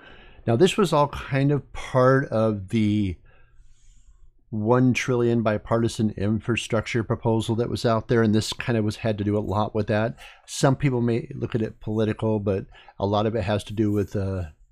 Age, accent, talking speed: 50-69, American, 190 wpm